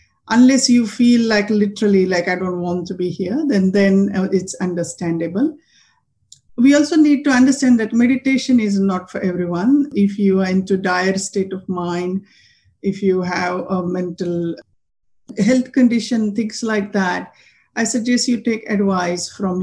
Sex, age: female, 50-69